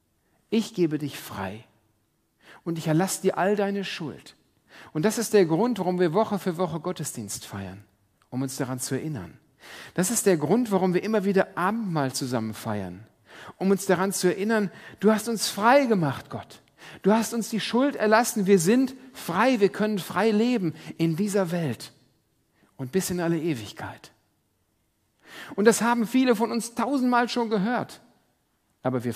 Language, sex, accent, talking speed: German, male, German, 170 wpm